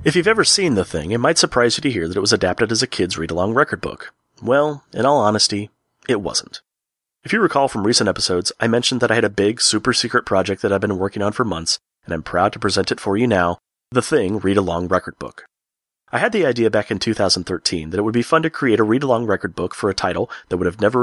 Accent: American